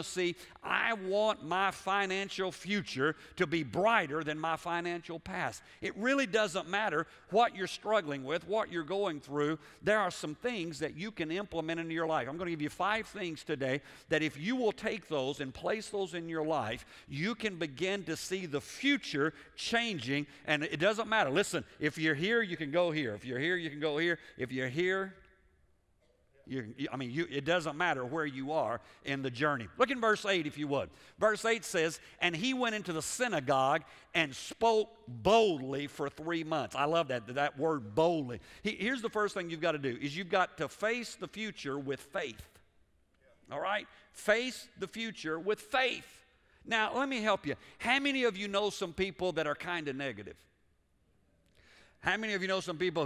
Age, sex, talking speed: 50-69, male, 195 wpm